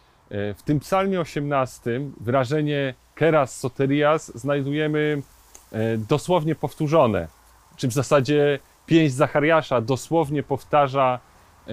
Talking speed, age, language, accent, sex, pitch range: 85 wpm, 30-49, Polish, native, male, 115-155 Hz